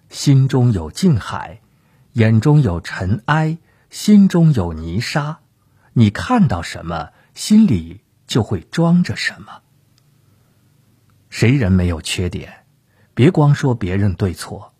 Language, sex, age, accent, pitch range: Chinese, male, 50-69, native, 100-135 Hz